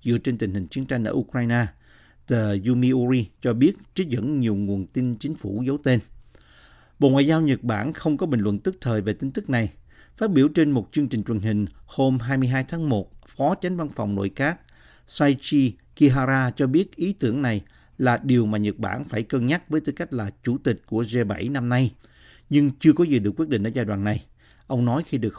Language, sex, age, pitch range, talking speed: Vietnamese, male, 50-69, 110-140 Hz, 220 wpm